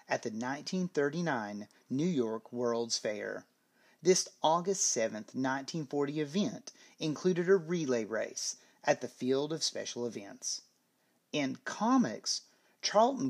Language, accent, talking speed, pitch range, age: English, American, 115 wpm, 120-165 Hz, 30-49